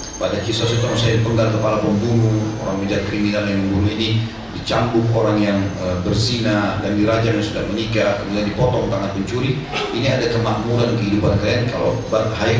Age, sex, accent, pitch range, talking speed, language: 40-59, male, native, 110-135 Hz, 160 wpm, Indonesian